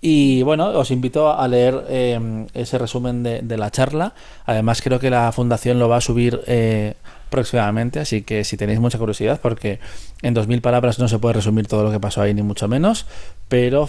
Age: 20-39